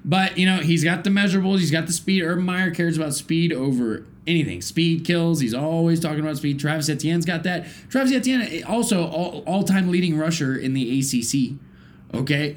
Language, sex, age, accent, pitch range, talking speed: English, male, 20-39, American, 150-195 Hz, 185 wpm